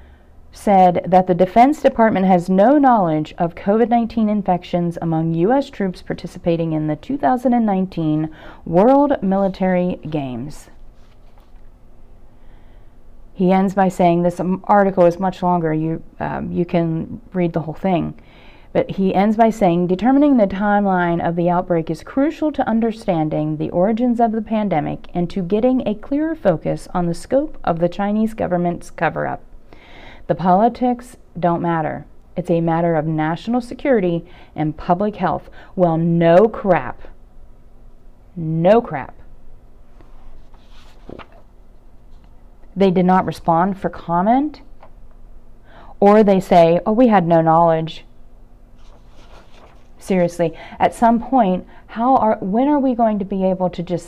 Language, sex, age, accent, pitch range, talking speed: English, female, 30-49, American, 165-215 Hz, 135 wpm